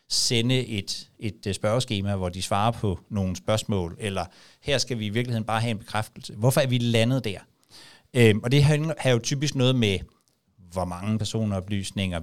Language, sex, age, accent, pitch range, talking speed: Danish, male, 60-79, native, 100-130 Hz, 175 wpm